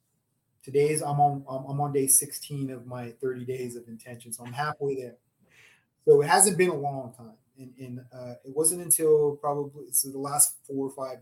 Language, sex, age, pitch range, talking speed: English, male, 20-39, 130-155 Hz, 185 wpm